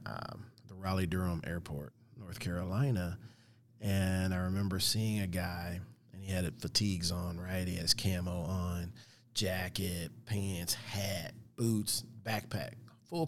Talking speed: 130 wpm